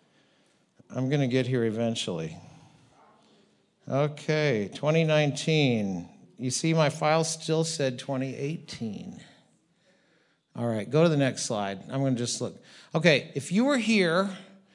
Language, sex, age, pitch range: English, male, 50-69, 130-170 Hz